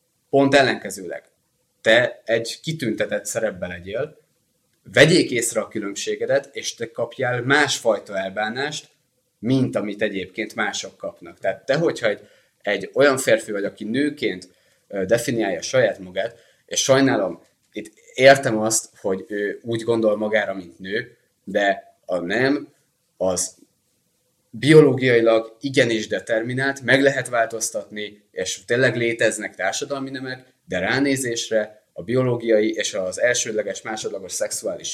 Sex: male